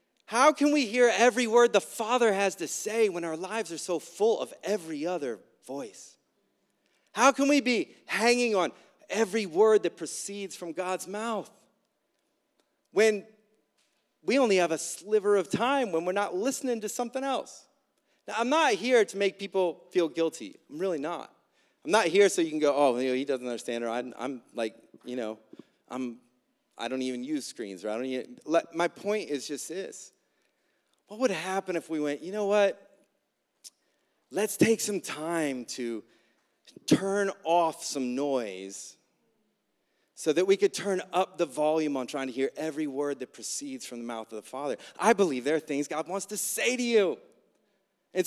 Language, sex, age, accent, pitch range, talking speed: English, male, 30-49, American, 155-240 Hz, 185 wpm